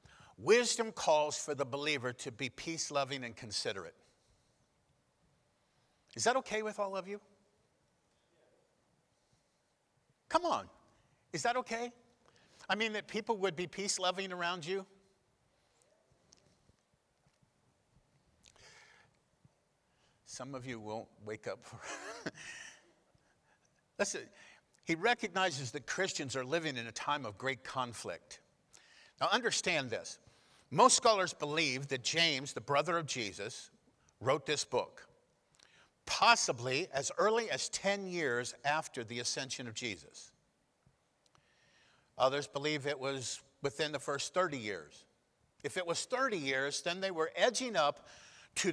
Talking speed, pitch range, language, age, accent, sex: 120 wpm, 135-200 Hz, English, 50-69, American, male